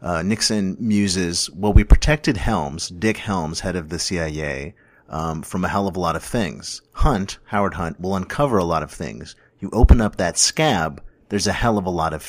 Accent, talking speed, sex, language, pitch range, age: American, 210 wpm, male, English, 85-105 Hz, 30-49